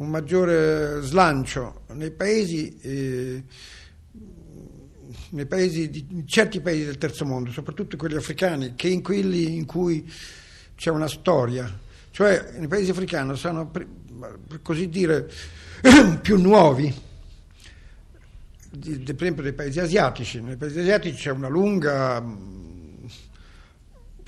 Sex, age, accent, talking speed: male, 60-79, native, 125 wpm